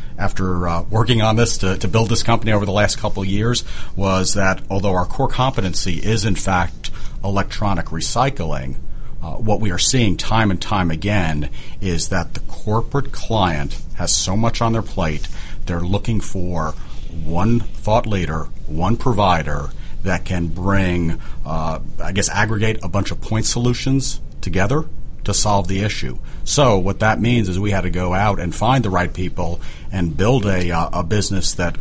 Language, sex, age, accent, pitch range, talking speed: English, male, 40-59, American, 85-110 Hz, 175 wpm